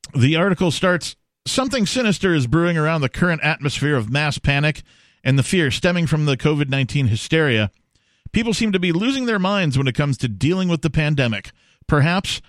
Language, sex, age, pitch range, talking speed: English, male, 50-69, 125-165 Hz, 185 wpm